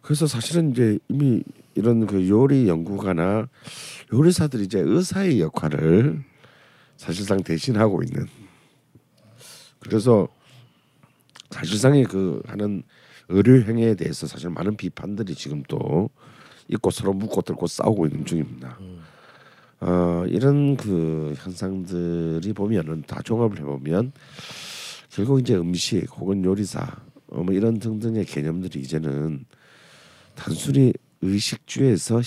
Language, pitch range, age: Korean, 90-130 Hz, 50-69